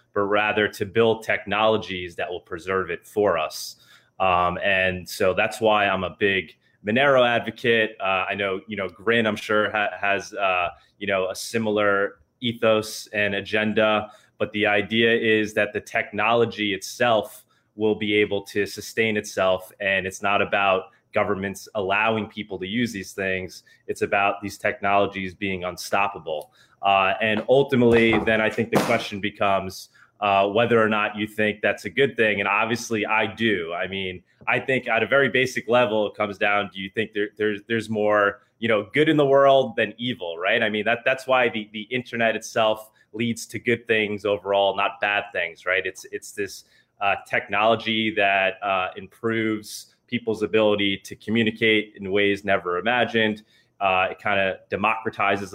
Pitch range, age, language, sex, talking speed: 100-115 Hz, 20-39, English, male, 175 wpm